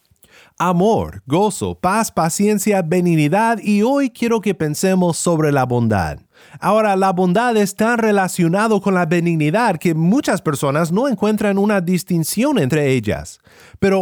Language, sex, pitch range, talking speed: Spanish, male, 155-210 Hz, 135 wpm